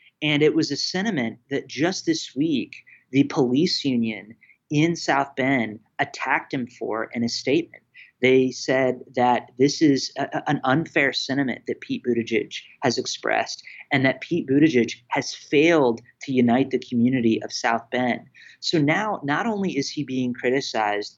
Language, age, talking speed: English, 30-49, 155 wpm